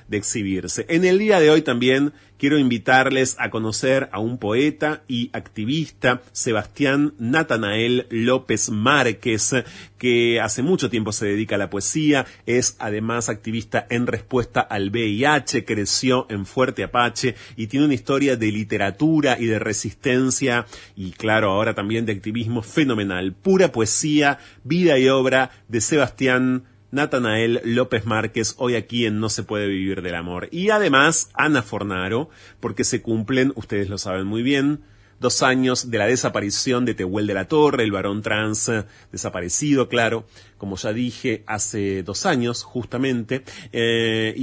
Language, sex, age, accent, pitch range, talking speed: Spanish, male, 30-49, Argentinian, 105-130 Hz, 150 wpm